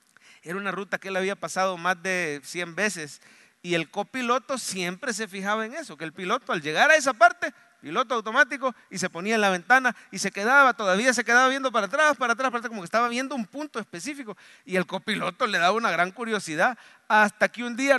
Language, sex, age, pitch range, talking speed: English, male, 40-59, 160-220 Hz, 225 wpm